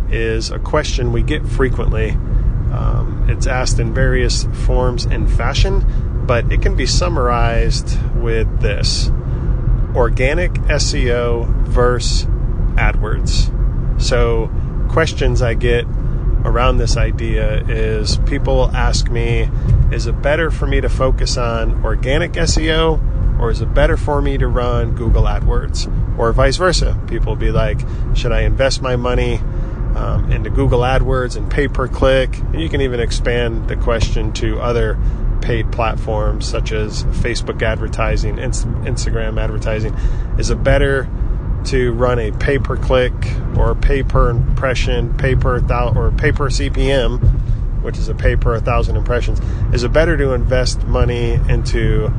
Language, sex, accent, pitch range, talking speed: English, male, American, 110-125 Hz, 150 wpm